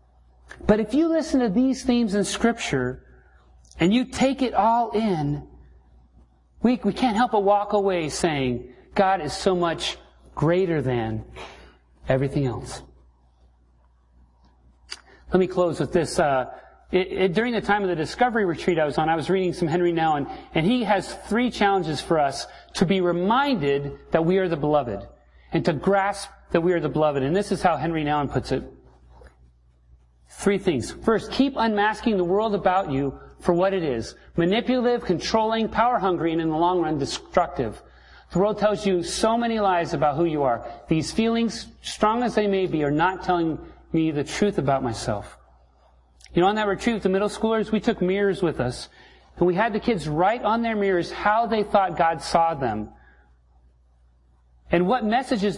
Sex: male